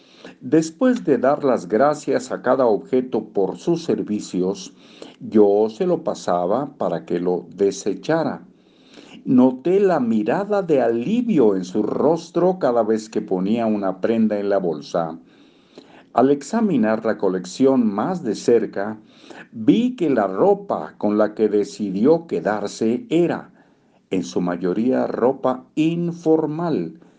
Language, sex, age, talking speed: Spanish, male, 50-69, 130 wpm